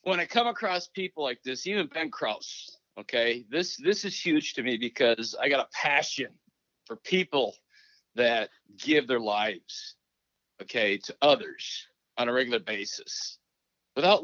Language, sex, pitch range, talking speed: English, male, 120-160 Hz, 150 wpm